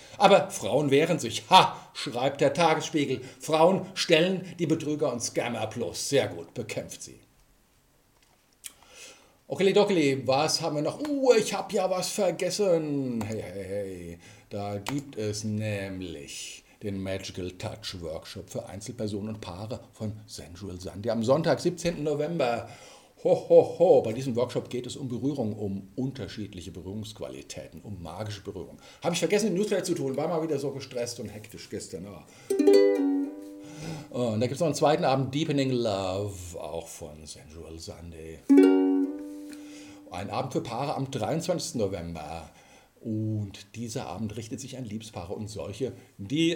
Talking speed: 150 wpm